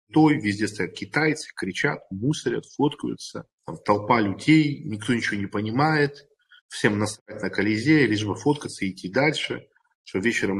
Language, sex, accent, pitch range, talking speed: Russian, male, native, 105-155 Hz, 140 wpm